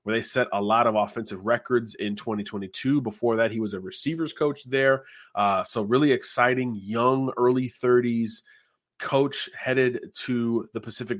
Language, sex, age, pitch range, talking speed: English, male, 30-49, 110-135 Hz, 160 wpm